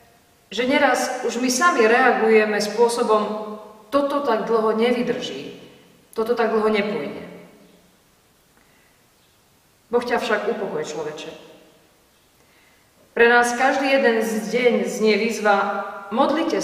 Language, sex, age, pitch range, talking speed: Slovak, female, 40-59, 205-240 Hz, 105 wpm